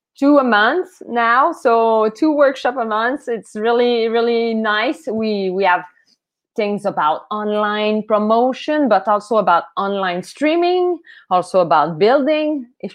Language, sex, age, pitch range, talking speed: English, female, 20-39, 195-255 Hz, 135 wpm